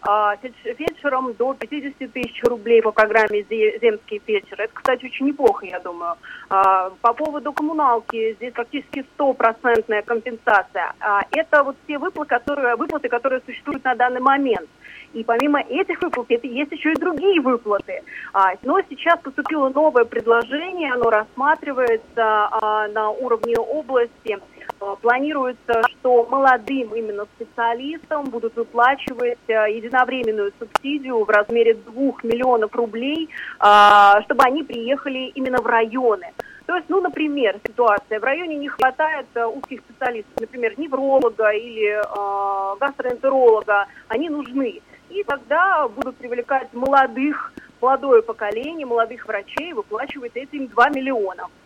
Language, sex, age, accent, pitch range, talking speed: Russian, female, 30-49, native, 225-285 Hz, 120 wpm